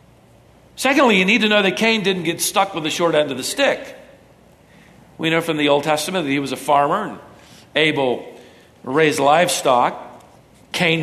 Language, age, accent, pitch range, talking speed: English, 50-69, American, 155-220 Hz, 180 wpm